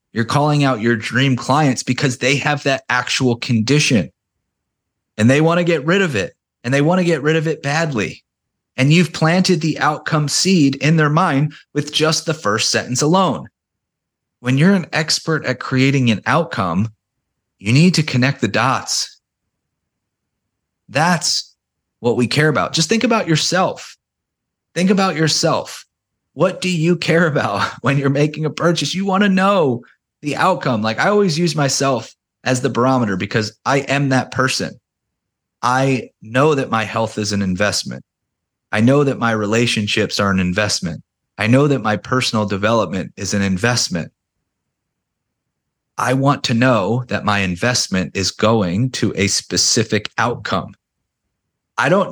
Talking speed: 160 wpm